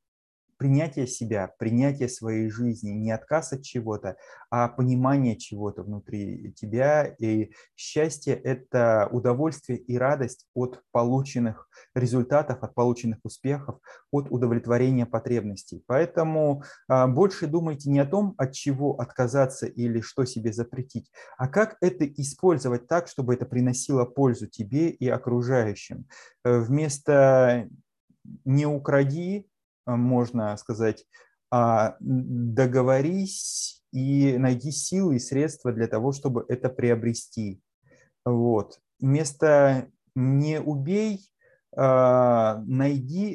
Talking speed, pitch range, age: 100 wpm, 120-140 Hz, 20-39